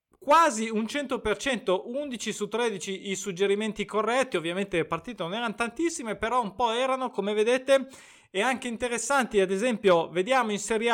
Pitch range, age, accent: 185-230 Hz, 20-39, native